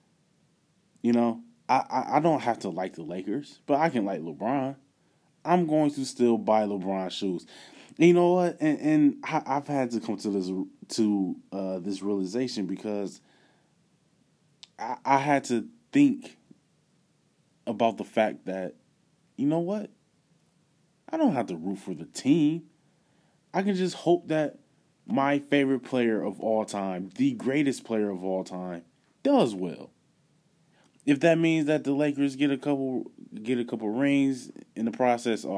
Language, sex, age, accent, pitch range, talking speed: English, male, 20-39, American, 100-150 Hz, 165 wpm